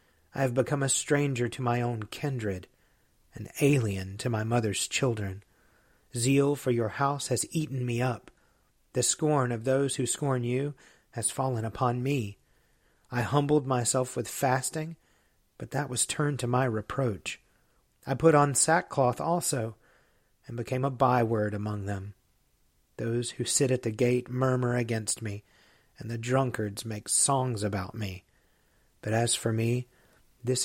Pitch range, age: 115-135 Hz, 40-59